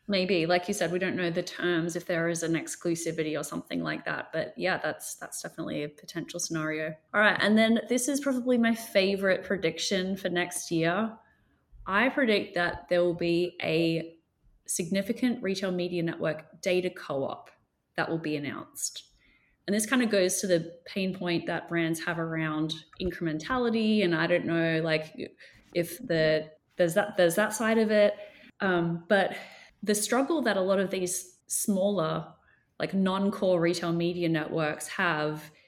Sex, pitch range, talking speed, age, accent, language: female, 165-195 Hz, 170 wpm, 20-39, Australian, English